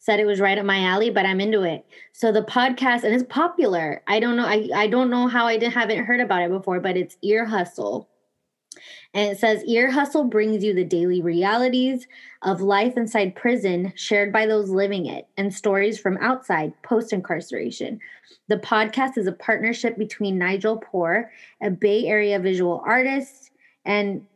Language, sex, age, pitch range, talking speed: English, female, 20-39, 190-240 Hz, 180 wpm